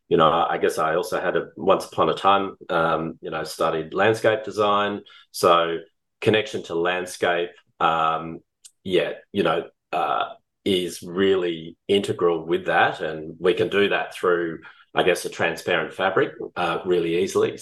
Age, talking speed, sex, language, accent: 30-49, 160 wpm, male, English, Australian